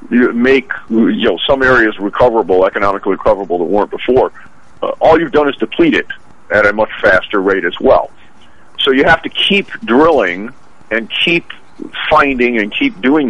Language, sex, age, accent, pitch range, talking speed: English, male, 50-69, American, 105-150 Hz, 165 wpm